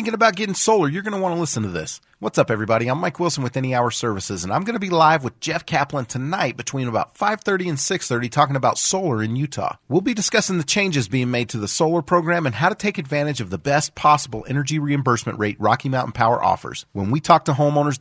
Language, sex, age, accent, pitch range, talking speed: English, male, 40-59, American, 115-160 Hz, 255 wpm